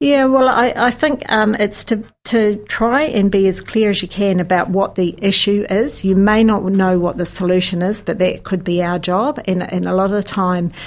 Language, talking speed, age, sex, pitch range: English, 235 wpm, 50-69, female, 165-190 Hz